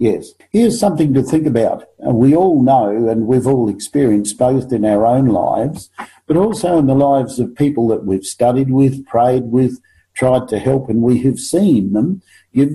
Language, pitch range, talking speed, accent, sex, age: English, 120-155 Hz, 190 wpm, Australian, male, 50-69